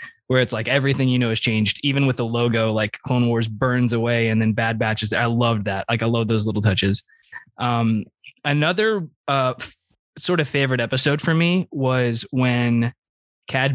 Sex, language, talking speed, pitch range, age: male, English, 195 wpm, 120-140 Hz, 20-39